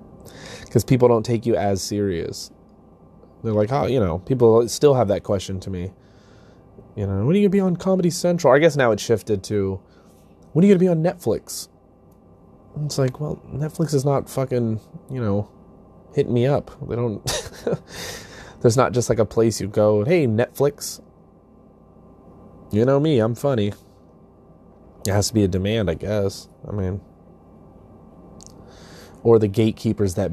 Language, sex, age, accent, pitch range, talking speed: English, male, 20-39, American, 100-130 Hz, 170 wpm